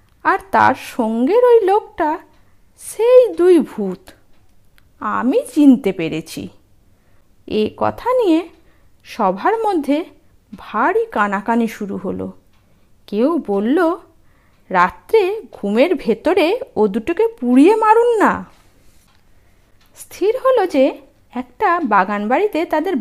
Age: 50-69